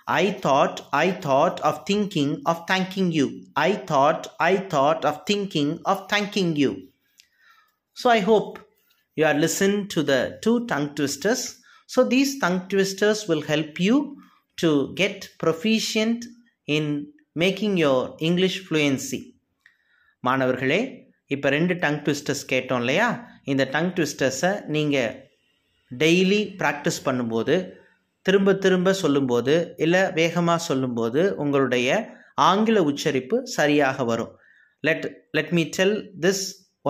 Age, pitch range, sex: 30-49, 140-195 Hz, male